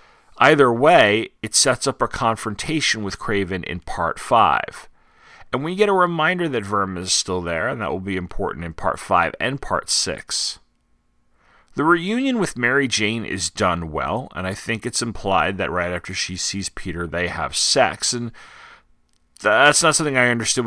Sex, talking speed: male, 175 wpm